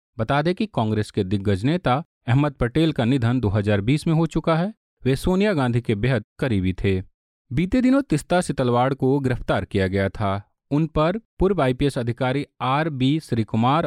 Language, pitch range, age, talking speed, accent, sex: Hindi, 115-160 Hz, 40-59, 170 wpm, native, male